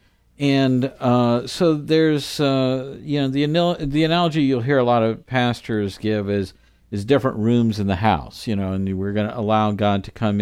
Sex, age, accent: male, 50-69, American